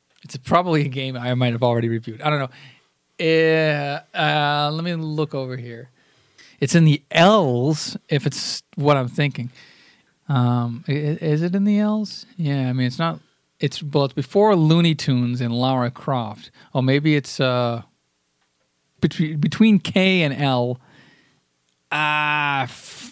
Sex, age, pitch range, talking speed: male, 40-59, 125-160 Hz, 150 wpm